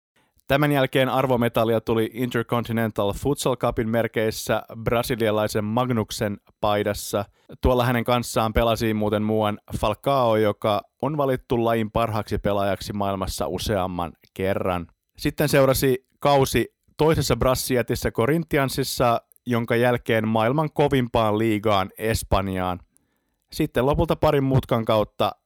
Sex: male